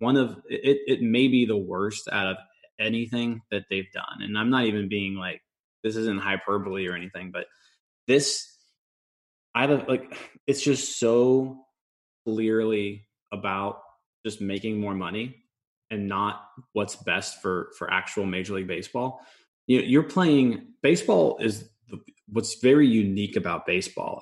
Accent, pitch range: American, 100-125 Hz